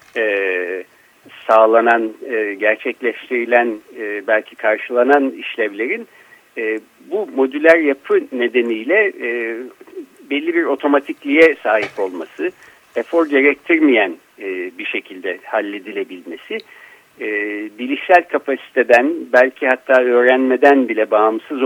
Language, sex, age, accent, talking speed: Turkish, male, 60-79, native, 90 wpm